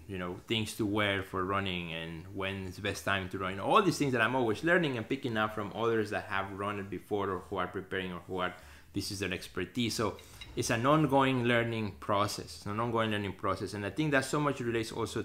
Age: 20-39